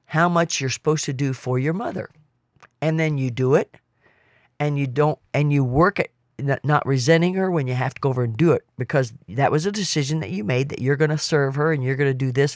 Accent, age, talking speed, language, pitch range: American, 50-69, 255 wpm, English, 130-165 Hz